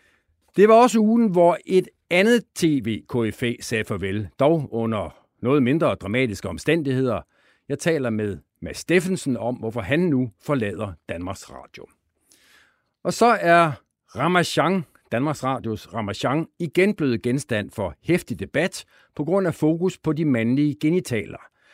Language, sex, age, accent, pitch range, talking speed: Danish, male, 60-79, native, 105-165 Hz, 135 wpm